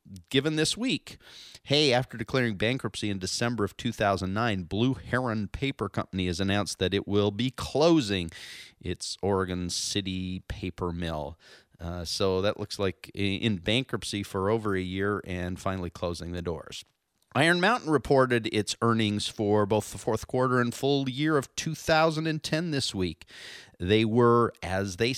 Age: 30-49